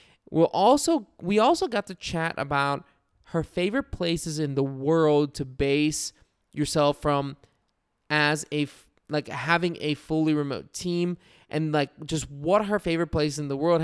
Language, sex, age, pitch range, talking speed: English, male, 20-39, 140-165 Hz, 155 wpm